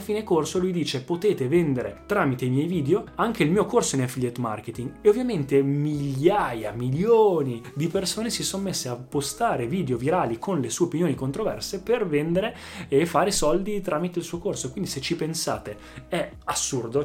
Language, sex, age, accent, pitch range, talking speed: Italian, male, 20-39, native, 130-175 Hz, 175 wpm